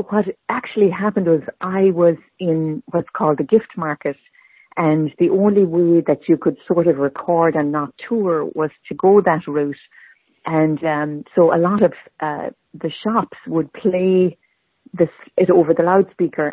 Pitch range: 155-180 Hz